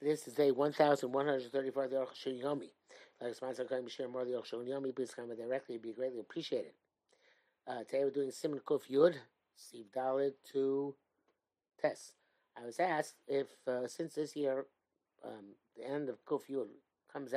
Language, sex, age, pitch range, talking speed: English, male, 50-69, 125-160 Hz, 190 wpm